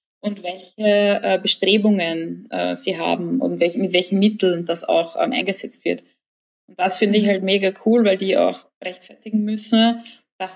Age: 20-39